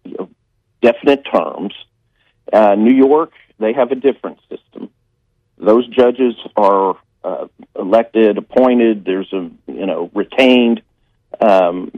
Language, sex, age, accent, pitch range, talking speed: English, male, 50-69, American, 100-125 Hz, 110 wpm